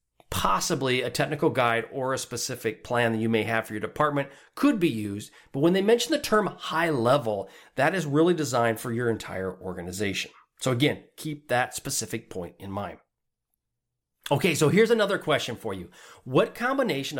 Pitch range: 120-180 Hz